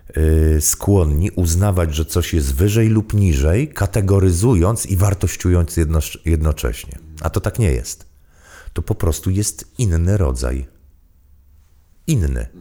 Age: 40-59